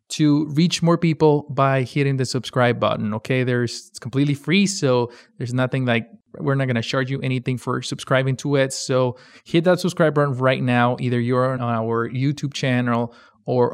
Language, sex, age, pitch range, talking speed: English, male, 20-39, 120-140 Hz, 190 wpm